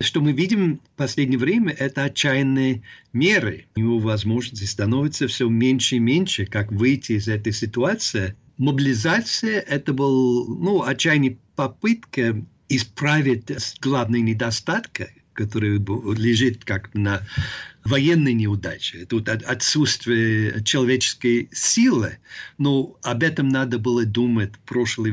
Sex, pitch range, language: male, 110-140 Hz, Russian